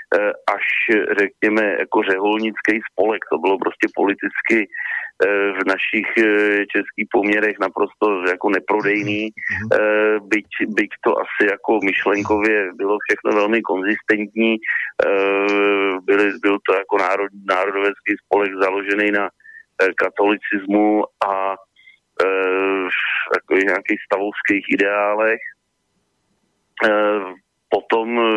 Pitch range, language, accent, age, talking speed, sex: 100-110 Hz, Czech, native, 40-59, 90 wpm, male